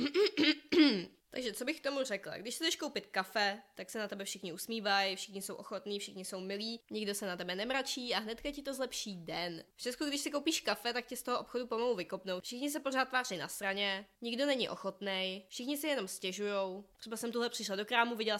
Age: 20-39